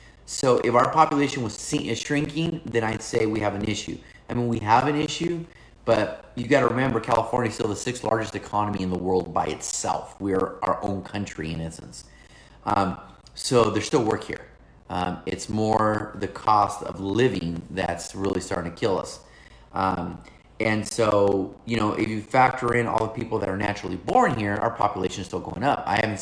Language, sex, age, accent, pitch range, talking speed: English, male, 30-49, American, 95-115 Hz, 200 wpm